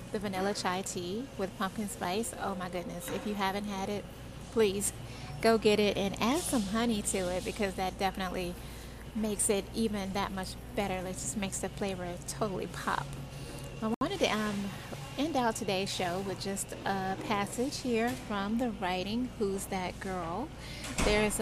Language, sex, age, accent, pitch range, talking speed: English, female, 30-49, American, 190-225 Hz, 170 wpm